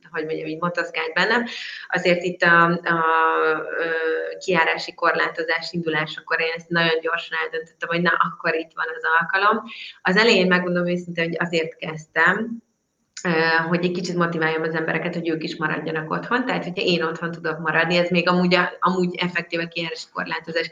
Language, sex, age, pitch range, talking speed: Hungarian, female, 30-49, 160-180 Hz, 160 wpm